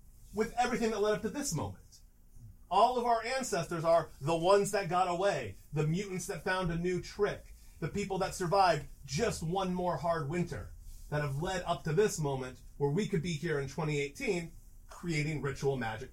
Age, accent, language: 40-59, American, English